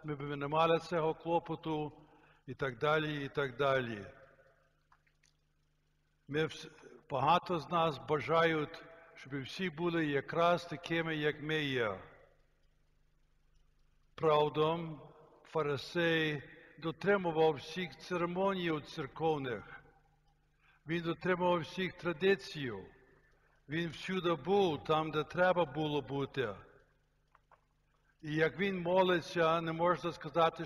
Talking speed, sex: 100 wpm, male